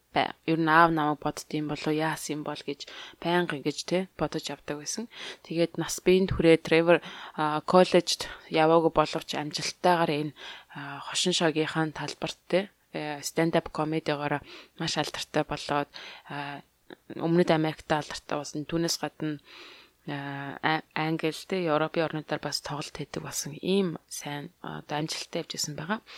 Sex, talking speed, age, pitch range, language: female, 135 wpm, 20-39, 150-175 Hz, English